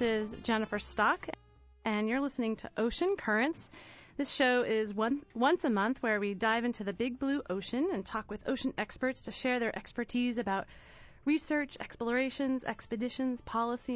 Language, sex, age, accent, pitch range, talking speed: English, female, 30-49, American, 200-245 Hz, 165 wpm